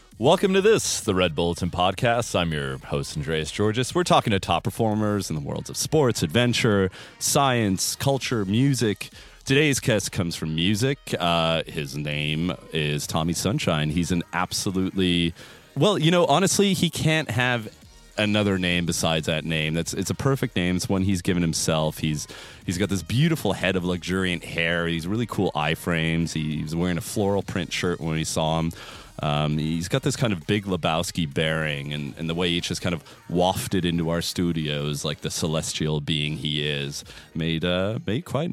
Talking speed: 185 wpm